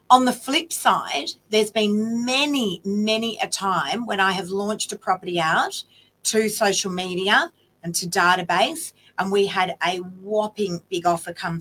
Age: 40-59